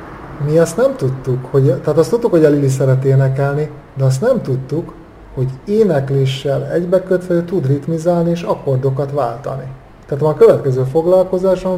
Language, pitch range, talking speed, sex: Hungarian, 135-160 Hz, 155 wpm, male